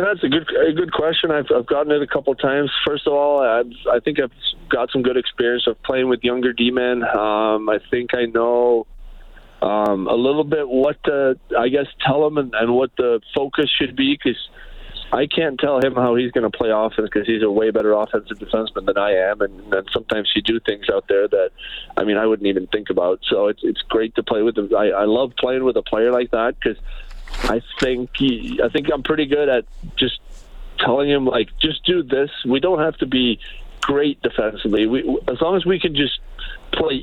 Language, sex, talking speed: English, male, 225 wpm